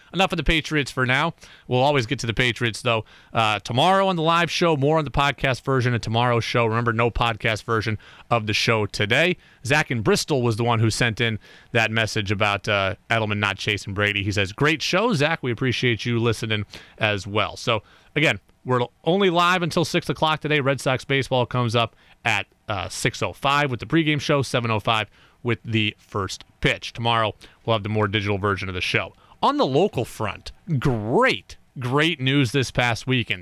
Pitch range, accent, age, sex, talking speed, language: 115-160 Hz, American, 30-49, male, 195 wpm, English